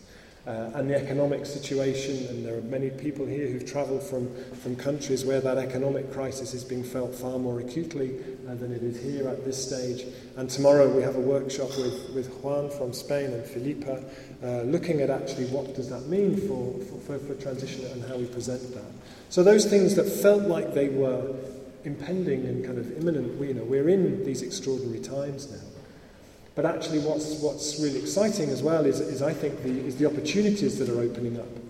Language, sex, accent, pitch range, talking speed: English, male, British, 125-145 Hz, 200 wpm